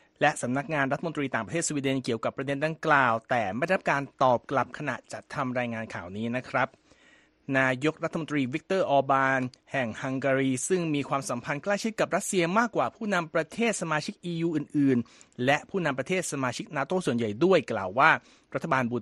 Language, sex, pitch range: Thai, male, 130-175 Hz